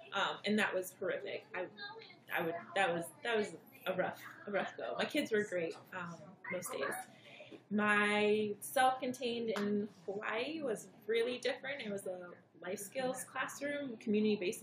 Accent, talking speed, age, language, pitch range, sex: American, 155 wpm, 20-39, English, 185-235 Hz, female